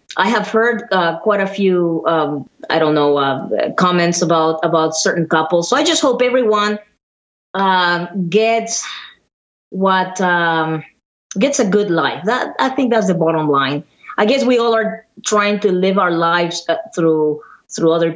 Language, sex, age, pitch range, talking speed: English, female, 20-39, 165-210 Hz, 170 wpm